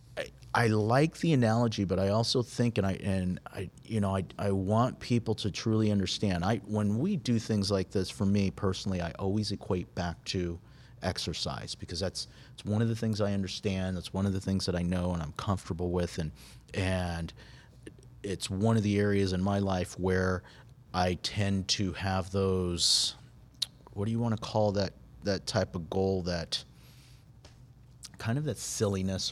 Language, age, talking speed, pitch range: English, 40-59, 185 wpm, 90-110 Hz